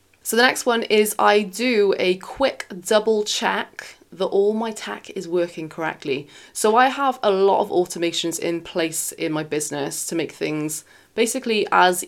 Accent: British